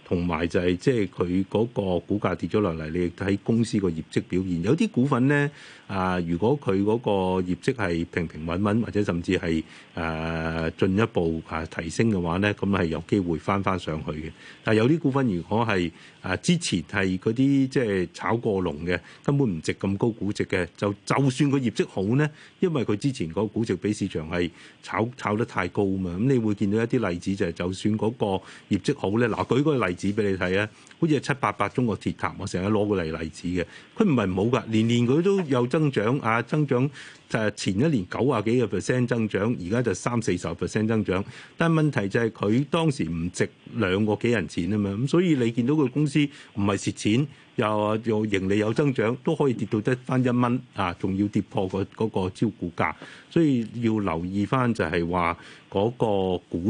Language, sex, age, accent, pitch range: Chinese, male, 30-49, native, 90-125 Hz